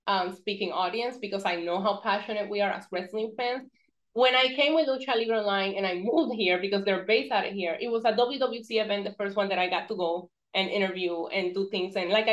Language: English